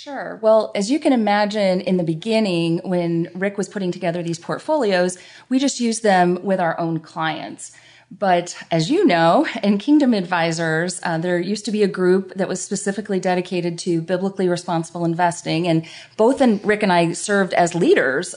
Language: English